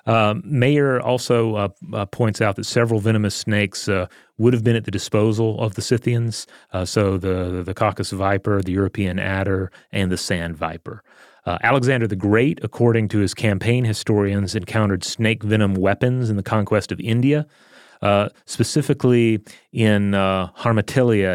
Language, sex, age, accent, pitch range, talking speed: English, male, 30-49, American, 100-120 Hz, 165 wpm